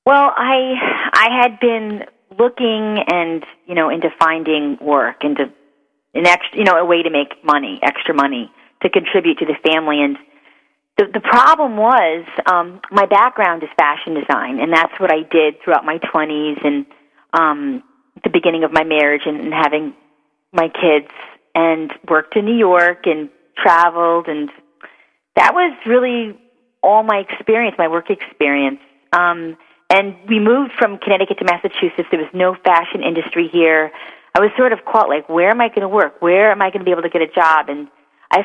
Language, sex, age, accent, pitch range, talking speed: English, female, 30-49, American, 160-220 Hz, 180 wpm